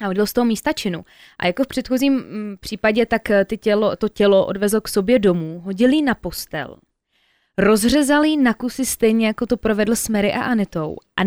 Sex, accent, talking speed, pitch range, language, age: female, native, 180 wpm, 190-225 Hz, Czech, 20-39